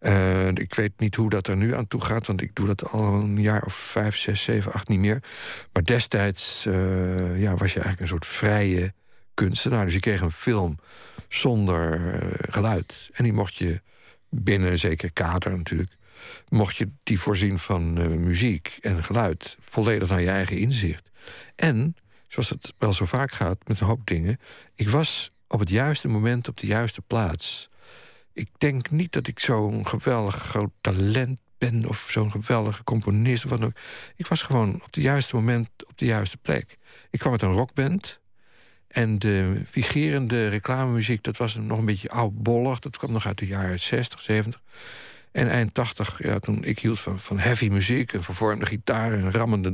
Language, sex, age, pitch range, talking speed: Dutch, male, 50-69, 95-120 Hz, 185 wpm